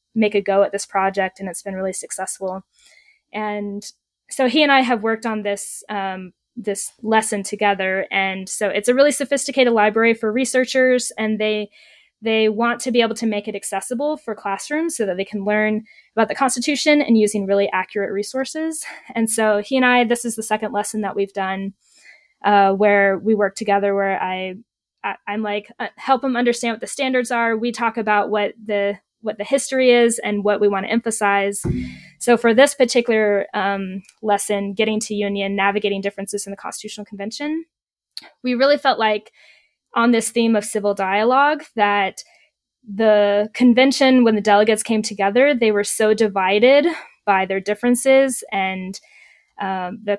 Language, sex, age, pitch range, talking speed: English, female, 10-29, 200-240 Hz, 175 wpm